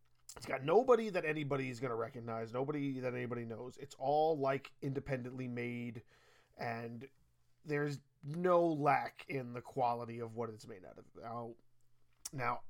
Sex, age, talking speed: male, 30-49, 155 wpm